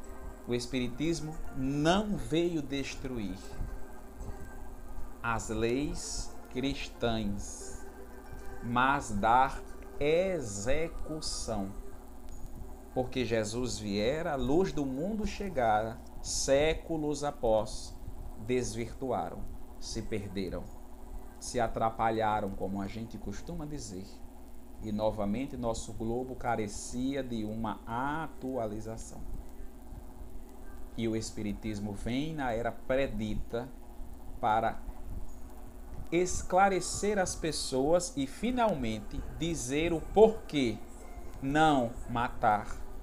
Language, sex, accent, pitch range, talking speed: Portuguese, male, Brazilian, 110-150 Hz, 80 wpm